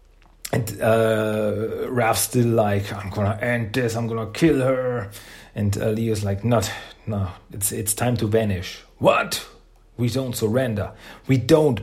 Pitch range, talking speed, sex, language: 100-115 Hz, 150 wpm, male, German